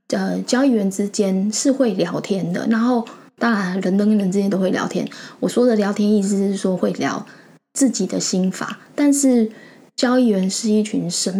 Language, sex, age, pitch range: Chinese, female, 10-29, 195-235 Hz